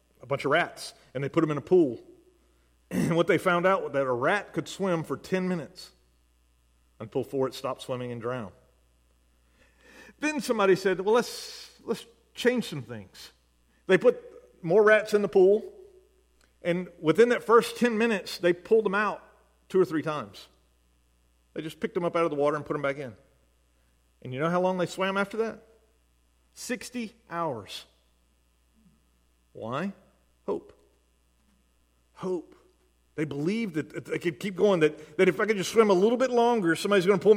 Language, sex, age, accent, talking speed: English, male, 40-59, American, 180 wpm